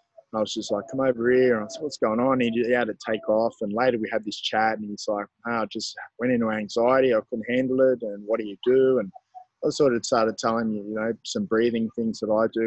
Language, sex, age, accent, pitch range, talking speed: English, male, 20-39, Australian, 105-125 Hz, 265 wpm